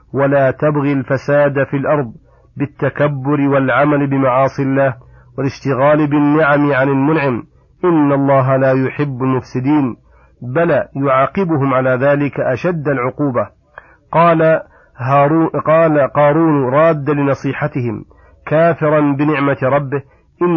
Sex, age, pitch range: male, 40-59, 135-150 Hz